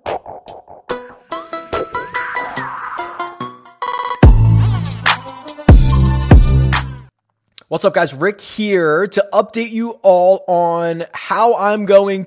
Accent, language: American, English